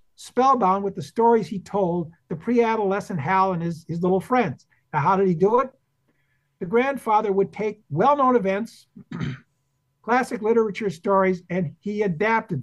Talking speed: 150 wpm